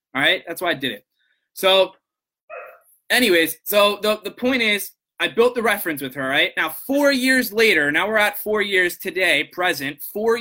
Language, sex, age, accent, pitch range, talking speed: English, male, 20-39, American, 160-210 Hz, 190 wpm